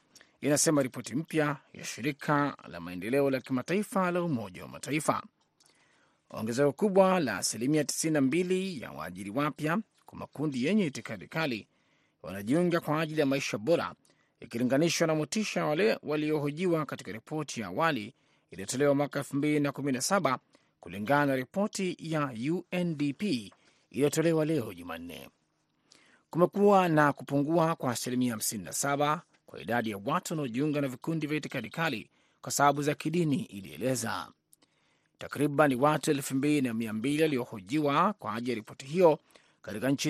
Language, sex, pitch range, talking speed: Swahili, male, 135-165 Hz, 125 wpm